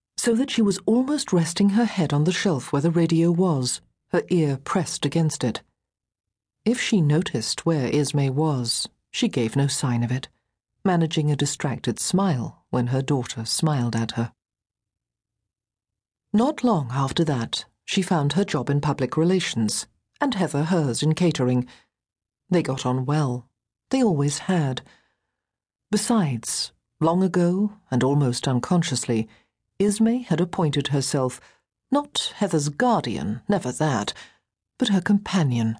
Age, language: 50-69, English